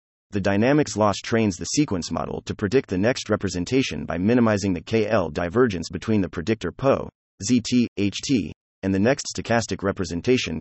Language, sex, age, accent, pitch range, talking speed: English, male, 30-49, American, 90-120 Hz, 160 wpm